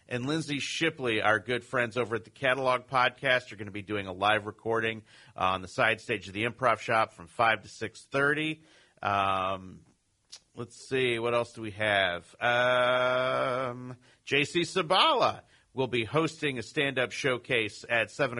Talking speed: 160 wpm